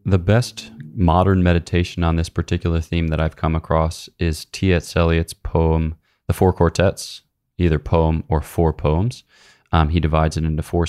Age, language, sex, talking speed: 20-39, English, male, 165 wpm